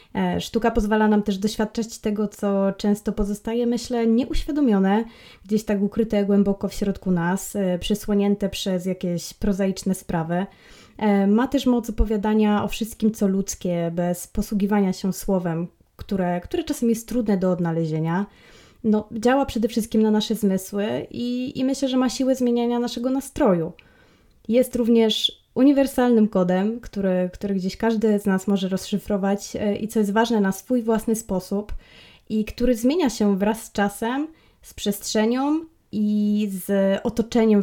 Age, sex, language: 20-39, female, Polish